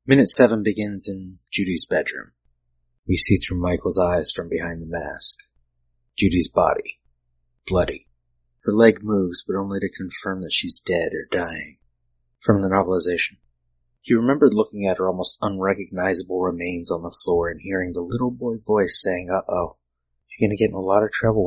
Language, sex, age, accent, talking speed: English, male, 30-49, American, 175 wpm